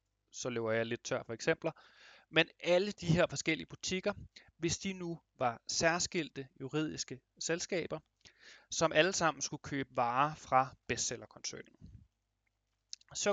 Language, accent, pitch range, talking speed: Danish, native, 125-165 Hz, 130 wpm